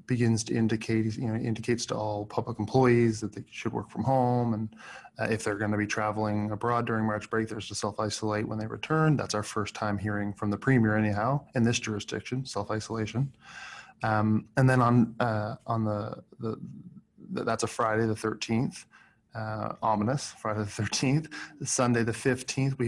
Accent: American